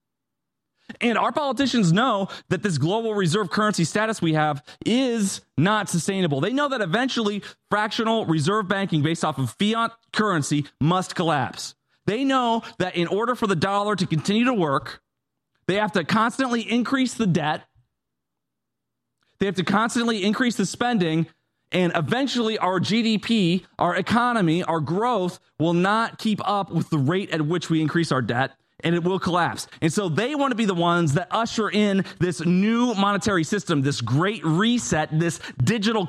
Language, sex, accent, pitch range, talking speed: English, male, American, 165-220 Hz, 165 wpm